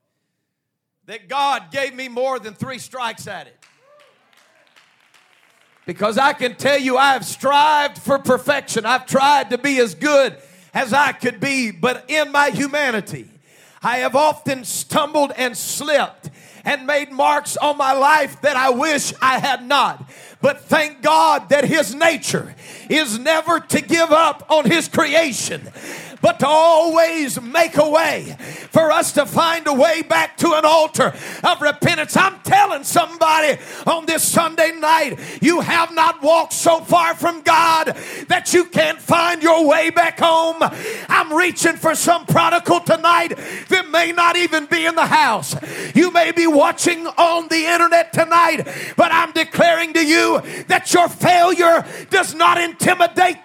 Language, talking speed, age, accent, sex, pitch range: English, 155 wpm, 50-69, American, male, 275-335 Hz